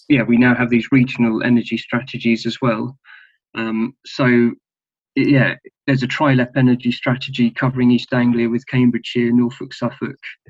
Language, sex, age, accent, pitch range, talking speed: English, male, 20-39, British, 115-125 Hz, 145 wpm